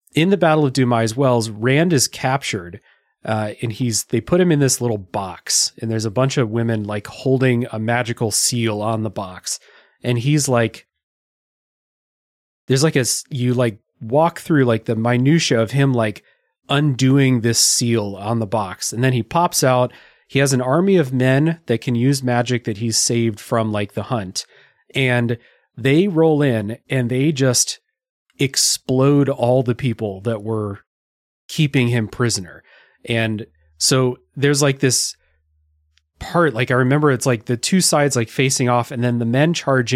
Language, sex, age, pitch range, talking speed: English, male, 30-49, 115-135 Hz, 170 wpm